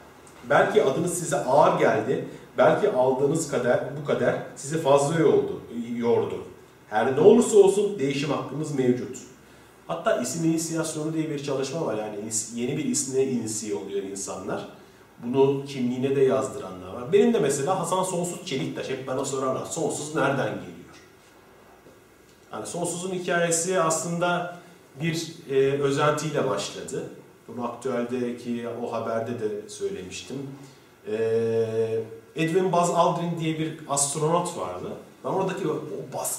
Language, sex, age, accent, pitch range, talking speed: Turkish, male, 40-59, native, 130-175 Hz, 130 wpm